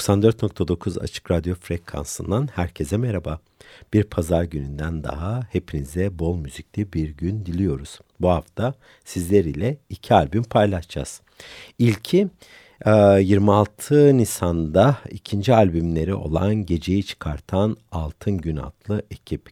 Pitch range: 85-110 Hz